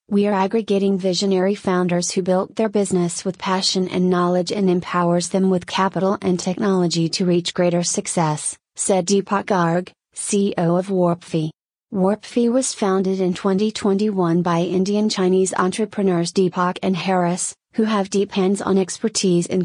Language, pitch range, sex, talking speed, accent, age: English, 180-200 Hz, female, 145 wpm, American, 30-49